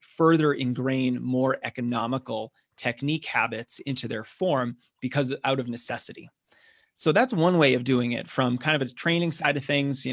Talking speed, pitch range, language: 170 wpm, 130-155 Hz, English